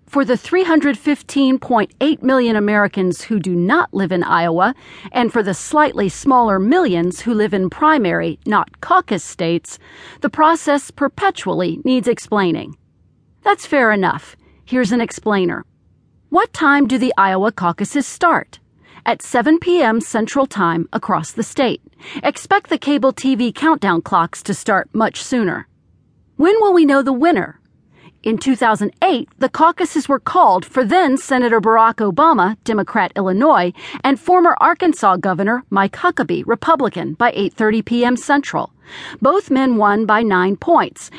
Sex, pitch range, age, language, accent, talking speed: female, 205-305 Hz, 40-59, English, American, 140 wpm